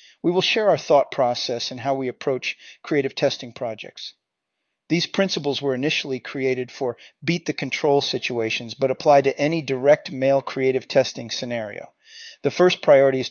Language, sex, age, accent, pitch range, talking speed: English, male, 40-59, American, 125-150 Hz, 160 wpm